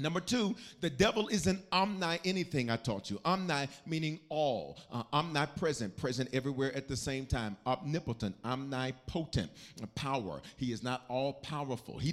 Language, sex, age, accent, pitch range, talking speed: English, male, 40-59, American, 135-185 Hz, 140 wpm